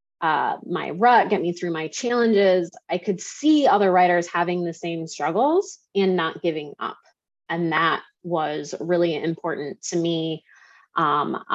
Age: 20-39